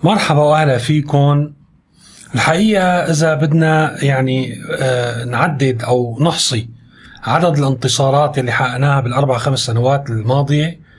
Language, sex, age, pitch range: Arabic, male, 30-49, 130-165 Hz